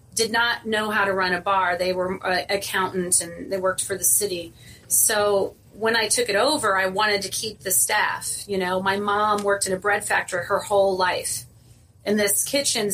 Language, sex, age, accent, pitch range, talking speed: English, female, 30-49, American, 180-210 Hz, 215 wpm